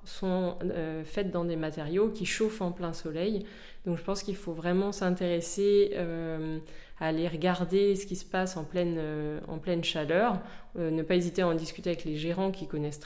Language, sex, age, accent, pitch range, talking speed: French, female, 20-39, French, 170-200 Hz, 200 wpm